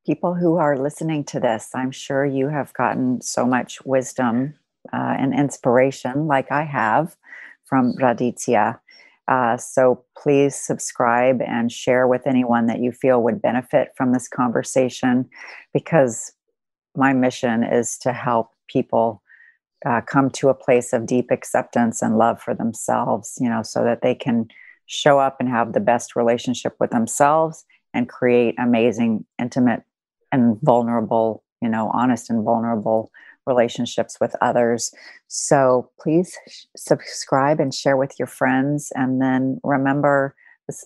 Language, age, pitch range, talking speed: English, 40-59, 120-135 Hz, 145 wpm